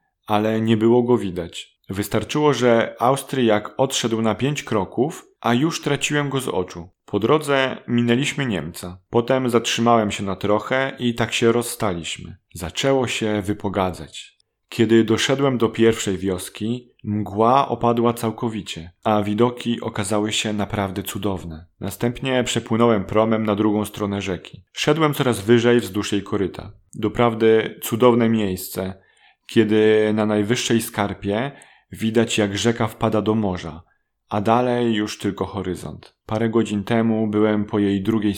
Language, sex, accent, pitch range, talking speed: Polish, male, native, 100-120 Hz, 135 wpm